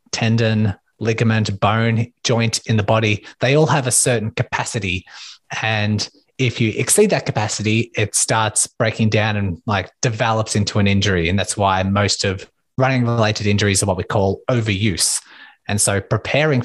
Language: English